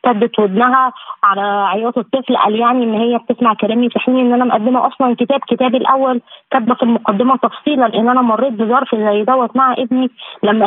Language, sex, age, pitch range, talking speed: Arabic, female, 20-39, 215-260 Hz, 180 wpm